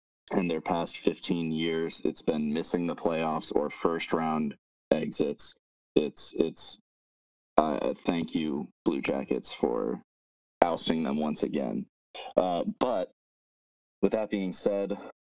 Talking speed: 125 wpm